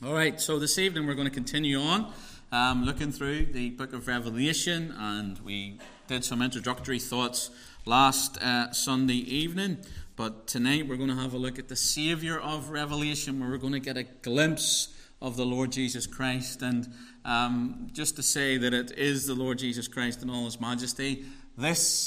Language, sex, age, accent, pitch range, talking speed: English, male, 30-49, British, 100-130 Hz, 185 wpm